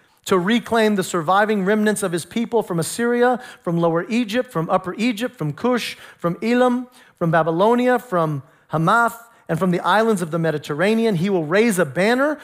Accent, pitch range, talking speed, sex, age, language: American, 180-240 Hz, 175 wpm, male, 40-59, English